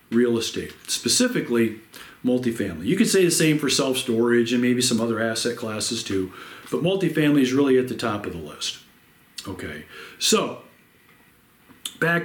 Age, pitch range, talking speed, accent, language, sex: 40-59, 120-170 Hz, 150 wpm, American, English, male